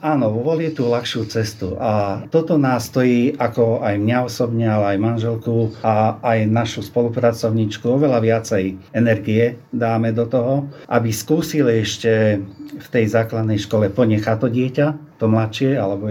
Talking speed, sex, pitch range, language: 145 wpm, male, 110-125 Hz, Slovak